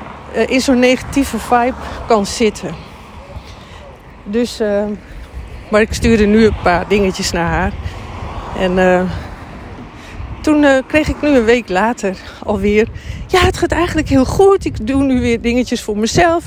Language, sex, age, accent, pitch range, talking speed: Dutch, female, 40-59, Dutch, 200-275 Hz, 150 wpm